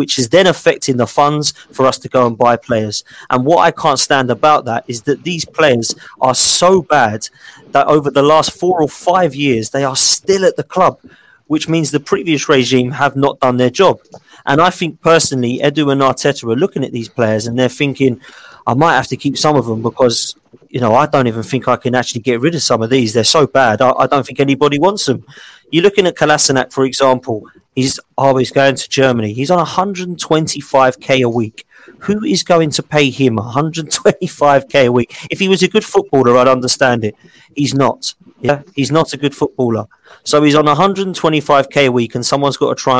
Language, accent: English, British